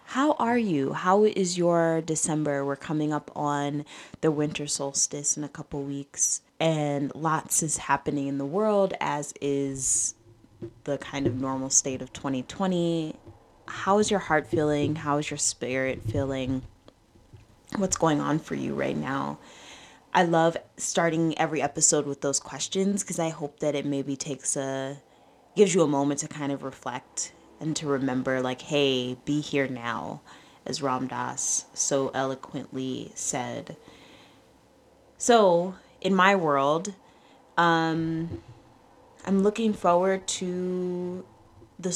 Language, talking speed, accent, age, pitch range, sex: English, 140 wpm, American, 20-39, 135-165 Hz, female